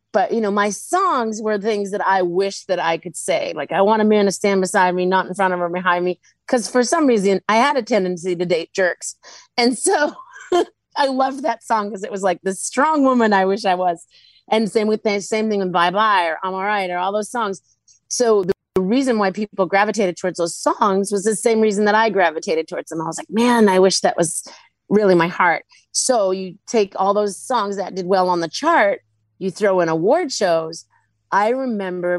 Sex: female